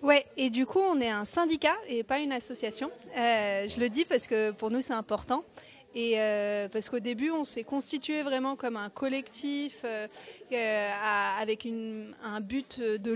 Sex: female